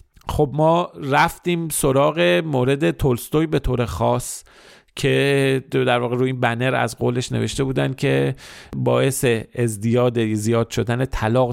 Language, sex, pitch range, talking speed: Persian, male, 115-150 Hz, 130 wpm